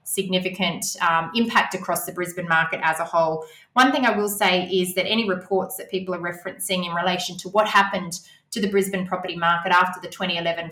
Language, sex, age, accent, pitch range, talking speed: English, female, 20-39, Australian, 175-200 Hz, 200 wpm